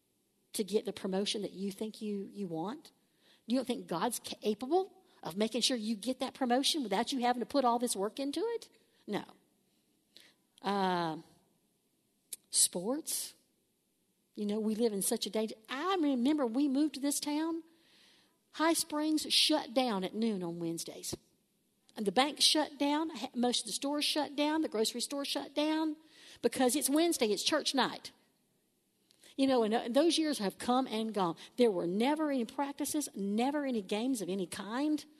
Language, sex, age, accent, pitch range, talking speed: English, female, 50-69, American, 215-295 Hz, 170 wpm